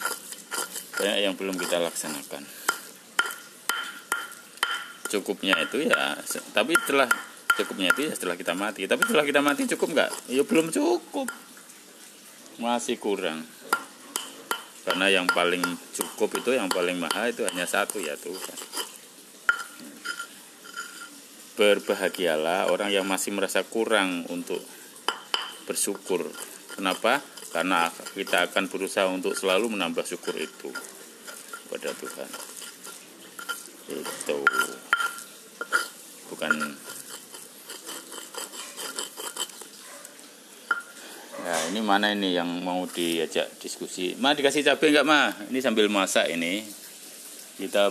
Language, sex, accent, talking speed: Indonesian, male, native, 100 wpm